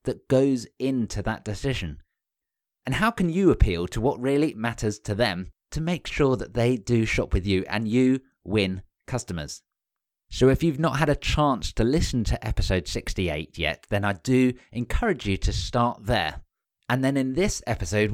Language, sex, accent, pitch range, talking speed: English, male, British, 100-135 Hz, 180 wpm